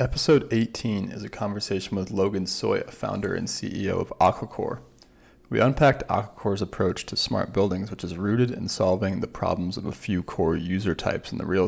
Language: English